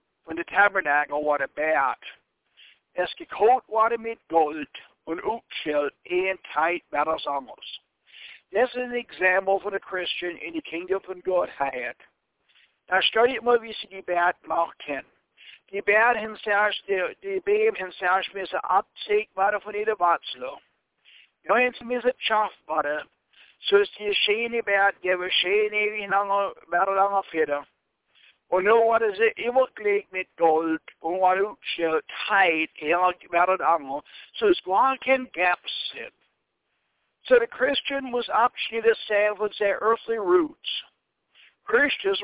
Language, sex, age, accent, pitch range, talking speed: English, male, 60-79, American, 175-245 Hz, 130 wpm